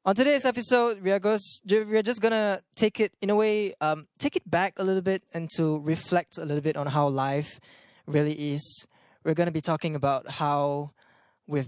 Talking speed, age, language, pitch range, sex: 195 wpm, 10-29, English, 140-180 Hz, male